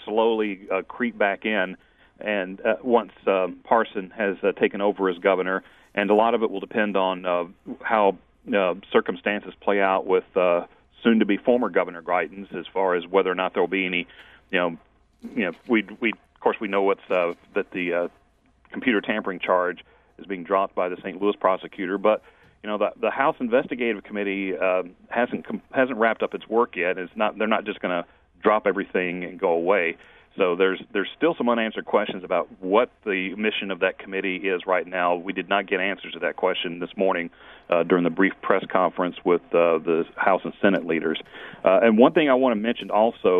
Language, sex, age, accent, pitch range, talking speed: English, male, 40-59, American, 90-105 Hz, 205 wpm